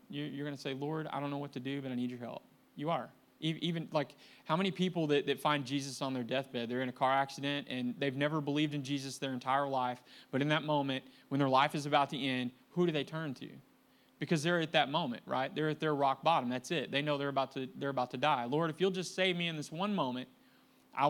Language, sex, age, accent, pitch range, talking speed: English, male, 30-49, American, 125-155 Hz, 265 wpm